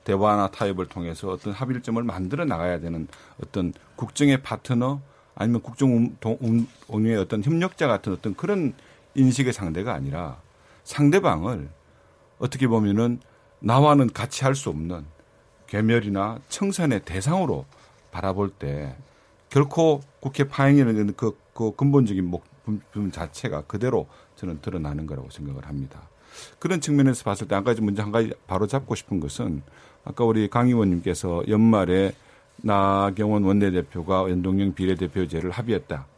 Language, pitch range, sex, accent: Korean, 90-125 Hz, male, native